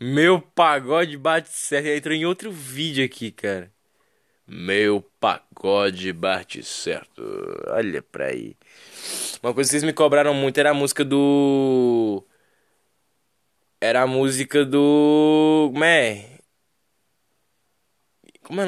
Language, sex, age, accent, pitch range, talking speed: Portuguese, male, 10-29, Brazilian, 130-195 Hz, 120 wpm